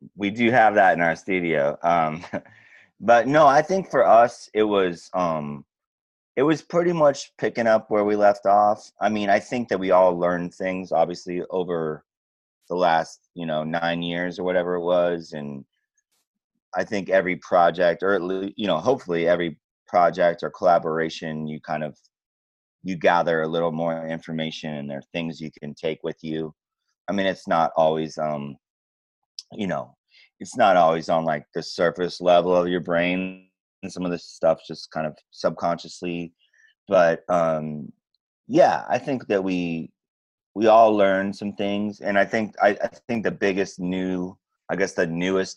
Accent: American